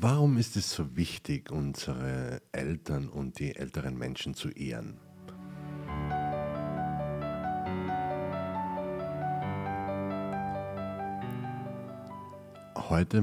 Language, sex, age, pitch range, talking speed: German, male, 60-79, 65-90 Hz, 65 wpm